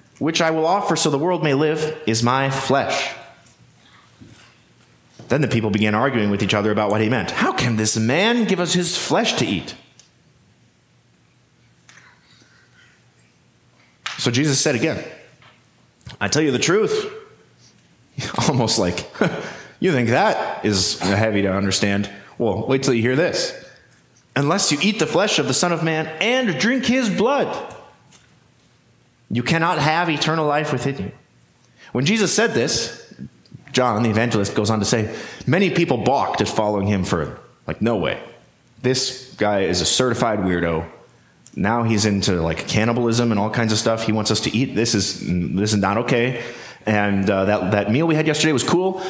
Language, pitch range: English, 105-155 Hz